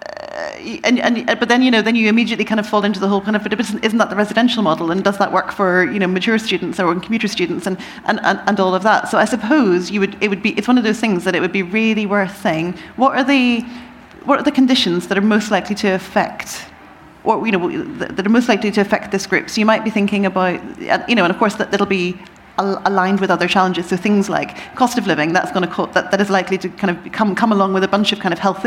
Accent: British